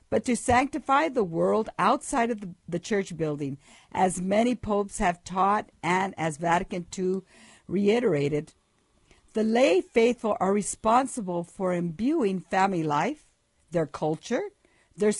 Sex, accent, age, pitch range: female, American, 60-79, 175-235 Hz